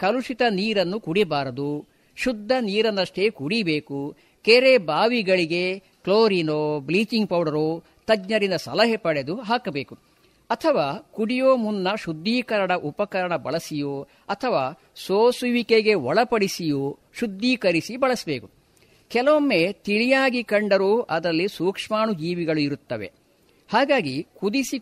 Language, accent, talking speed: Kannada, native, 80 wpm